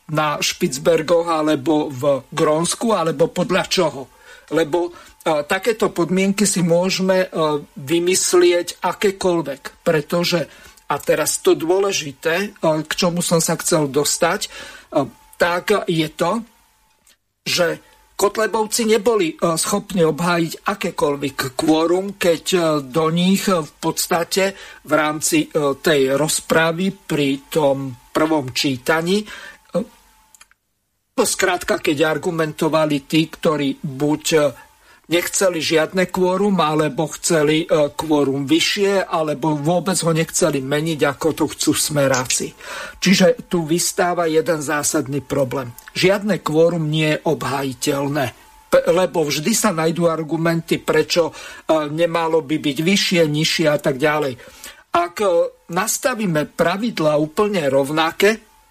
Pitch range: 155-190 Hz